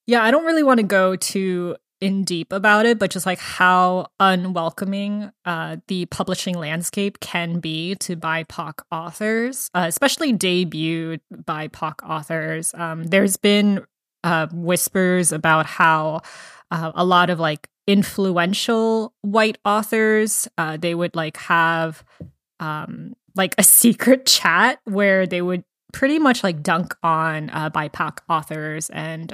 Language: English